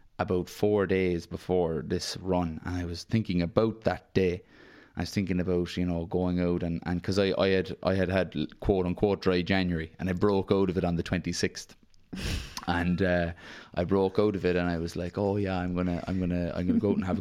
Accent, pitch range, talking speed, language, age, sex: Irish, 85-95 Hz, 235 wpm, English, 20-39, male